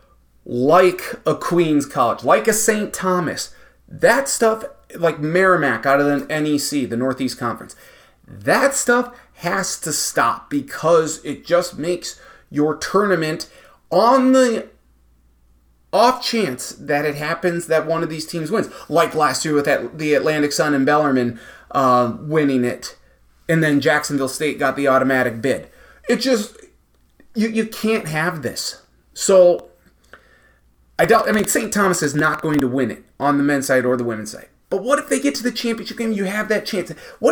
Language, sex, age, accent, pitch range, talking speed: English, male, 30-49, American, 135-185 Hz, 170 wpm